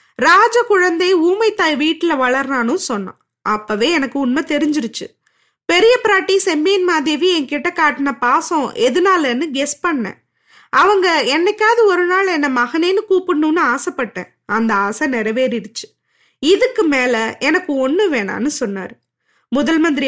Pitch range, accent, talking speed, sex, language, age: 255-360 Hz, native, 115 wpm, female, Tamil, 20-39